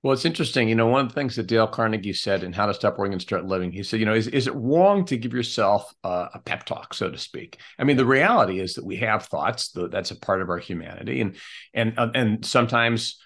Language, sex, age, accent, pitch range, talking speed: English, male, 50-69, American, 105-135 Hz, 260 wpm